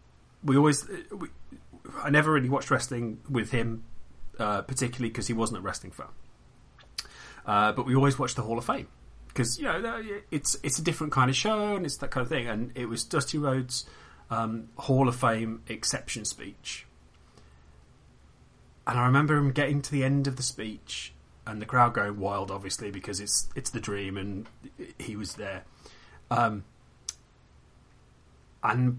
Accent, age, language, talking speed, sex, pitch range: British, 30-49, English, 170 wpm, male, 100-135 Hz